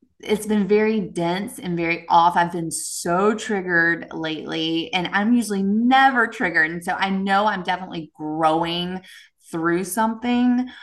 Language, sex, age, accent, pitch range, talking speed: English, female, 20-39, American, 165-205 Hz, 145 wpm